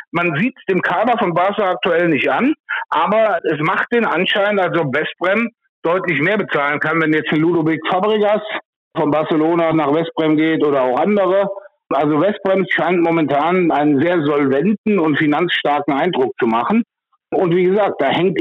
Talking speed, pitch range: 165 wpm, 150-200 Hz